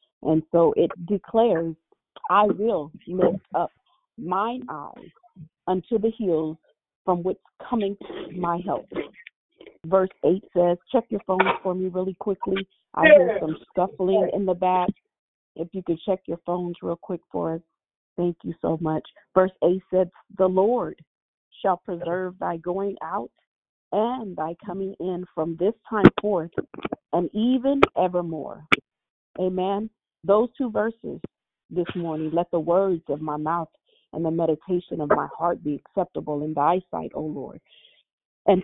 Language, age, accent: English, 40-59, American